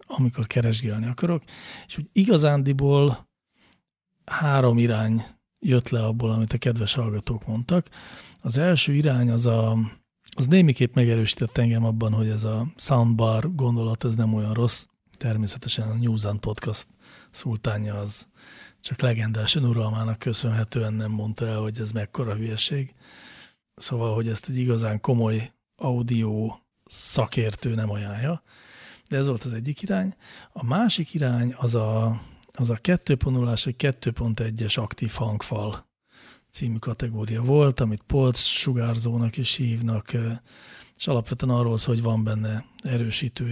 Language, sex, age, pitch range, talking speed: English, male, 40-59, 110-130 Hz, 130 wpm